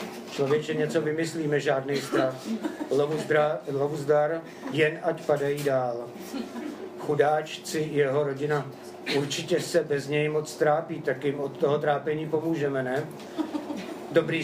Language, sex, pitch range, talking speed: Czech, male, 130-155 Hz, 115 wpm